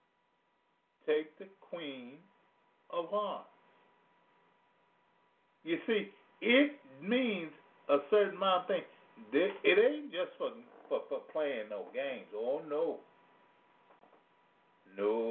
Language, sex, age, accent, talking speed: English, male, 50-69, American, 100 wpm